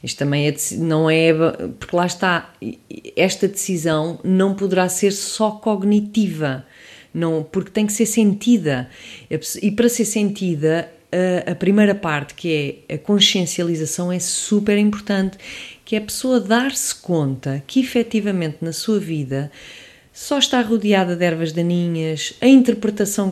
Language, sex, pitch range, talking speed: English, female, 160-210 Hz, 140 wpm